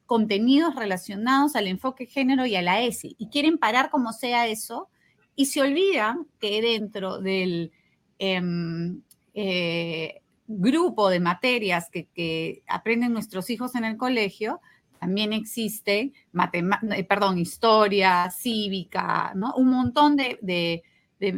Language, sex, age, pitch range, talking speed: Spanish, female, 30-49, 190-255 Hz, 125 wpm